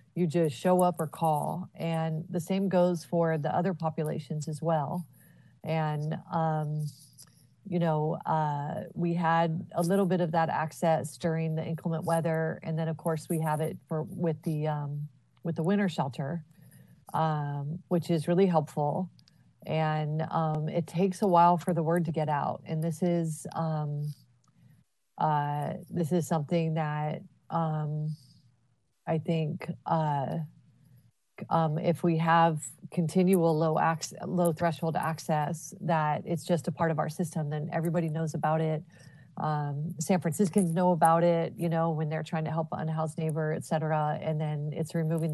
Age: 40-59